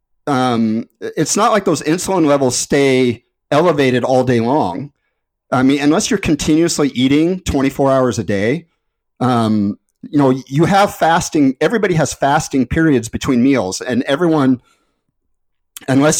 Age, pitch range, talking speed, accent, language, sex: 40-59, 120-150 Hz, 135 wpm, American, English, male